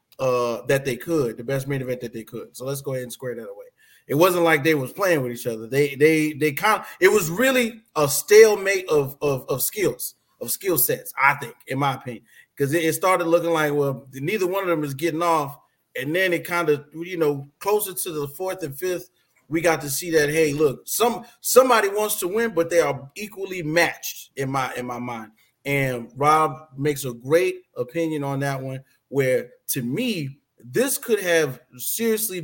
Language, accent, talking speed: English, American, 210 wpm